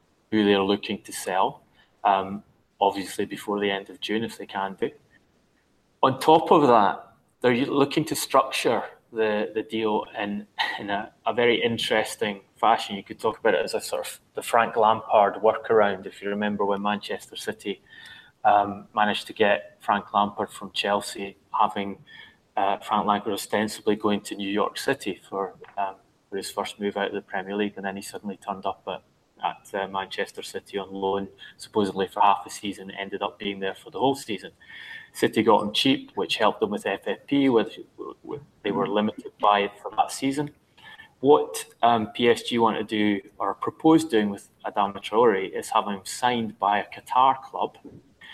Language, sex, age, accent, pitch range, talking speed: English, male, 20-39, British, 100-120 Hz, 180 wpm